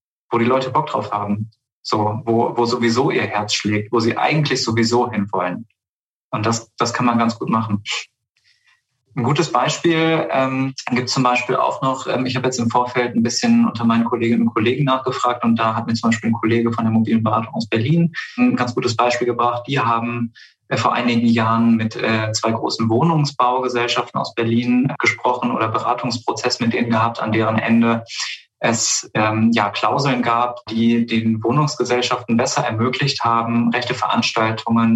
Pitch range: 110-120 Hz